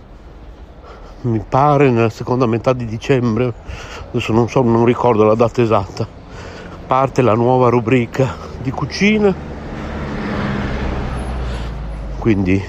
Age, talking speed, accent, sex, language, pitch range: 60-79, 105 wpm, native, male, Italian, 95-120 Hz